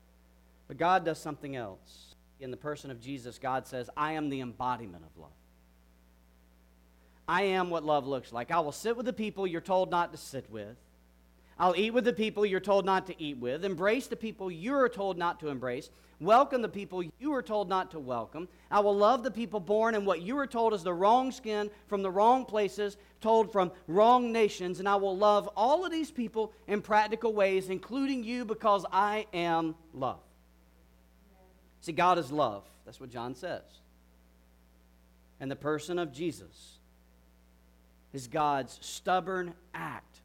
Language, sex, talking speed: English, male, 180 wpm